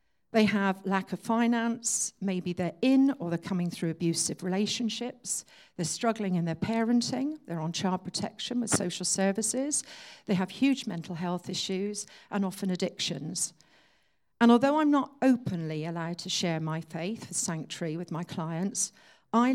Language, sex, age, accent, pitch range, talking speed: English, female, 50-69, British, 175-240 Hz, 155 wpm